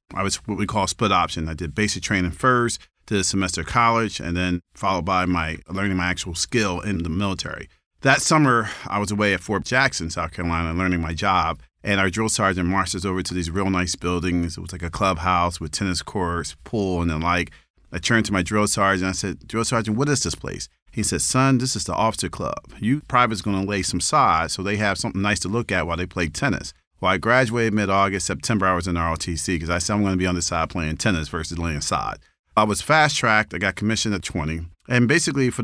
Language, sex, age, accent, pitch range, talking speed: English, male, 40-59, American, 85-105 Hz, 240 wpm